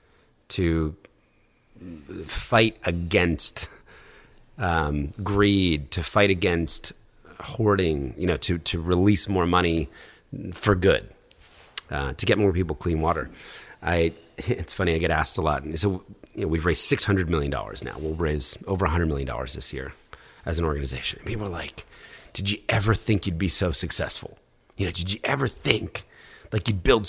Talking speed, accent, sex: 160 wpm, American, male